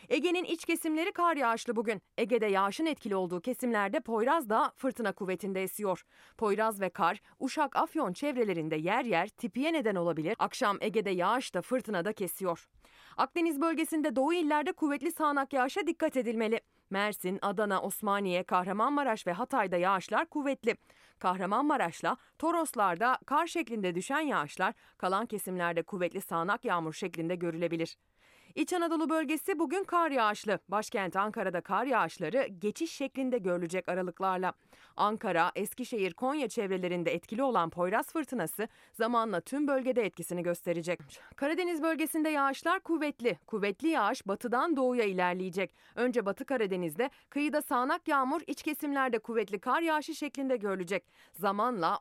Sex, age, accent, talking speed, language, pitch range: female, 30-49, native, 130 wpm, Turkish, 185-285 Hz